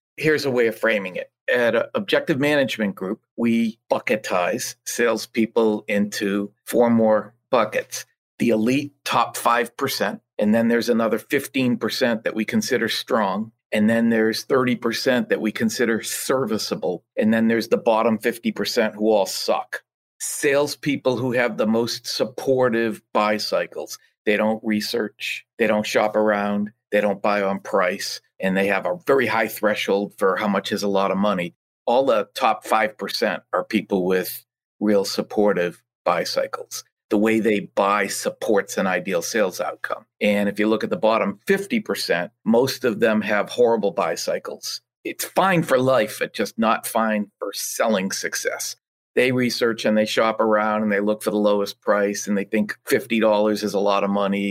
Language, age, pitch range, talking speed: English, 50-69, 105-120 Hz, 165 wpm